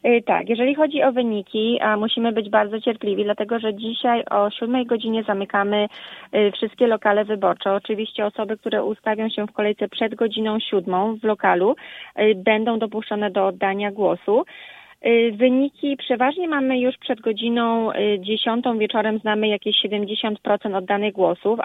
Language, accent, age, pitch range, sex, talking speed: Polish, native, 20-39, 210-230 Hz, female, 140 wpm